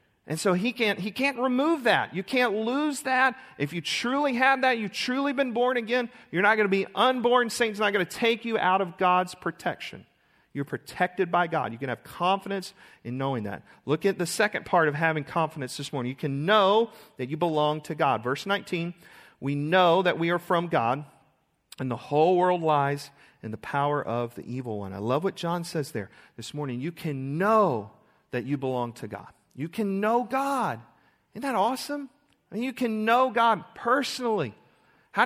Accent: American